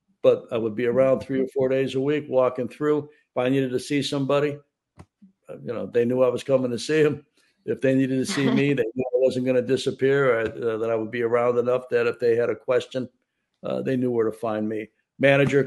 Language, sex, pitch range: English, male, 120-145 Hz